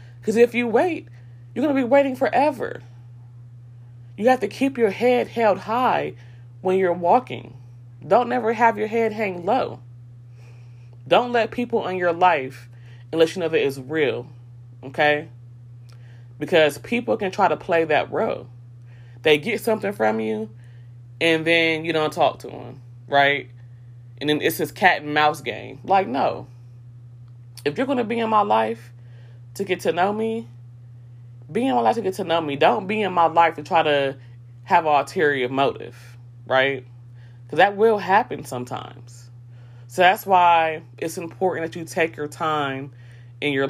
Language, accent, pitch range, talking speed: English, American, 120-180 Hz, 170 wpm